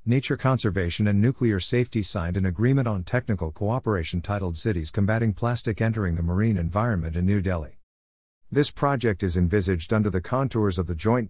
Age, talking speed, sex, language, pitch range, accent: 50-69, 170 wpm, male, English, 90-110 Hz, American